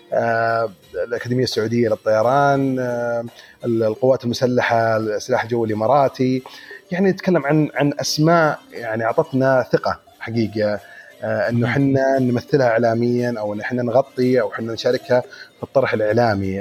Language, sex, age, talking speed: Arabic, male, 30-49, 110 wpm